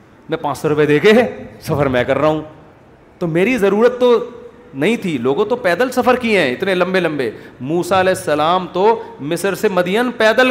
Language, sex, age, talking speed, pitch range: Urdu, male, 40-59, 190 wpm, 165-225 Hz